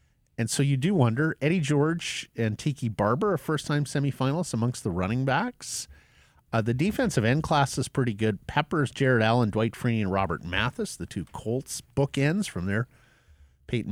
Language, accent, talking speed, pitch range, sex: English, American, 175 wpm, 110-145 Hz, male